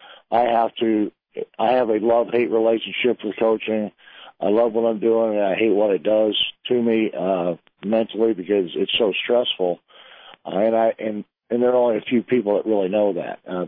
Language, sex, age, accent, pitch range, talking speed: English, male, 60-79, American, 100-115 Hz, 200 wpm